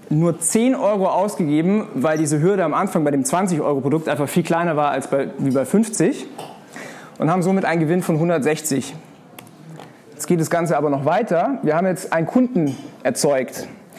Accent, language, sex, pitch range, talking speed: German, German, male, 150-200 Hz, 170 wpm